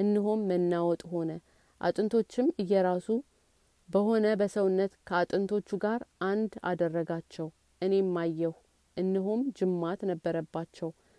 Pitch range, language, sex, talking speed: 170-200 Hz, Amharic, female, 85 wpm